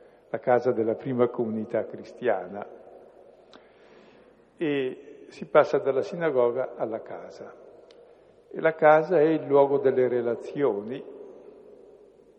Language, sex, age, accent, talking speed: Italian, male, 60-79, native, 100 wpm